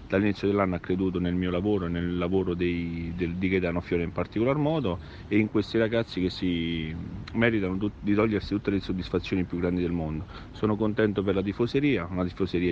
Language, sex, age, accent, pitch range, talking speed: Italian, male, 40-59, native, 90-105 Hz, 195 wpm